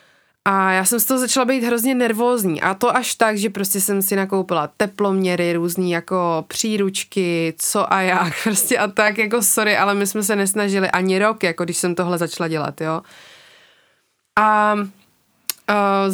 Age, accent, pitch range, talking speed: 20-39, native, 195-245 Hz, 170 wpm